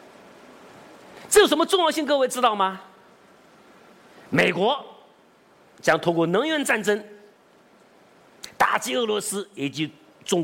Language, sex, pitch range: Chinese, male, 170-255 Hz